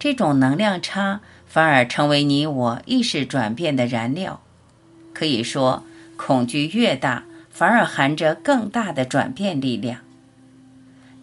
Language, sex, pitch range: Chinese, female, 130-190 Hz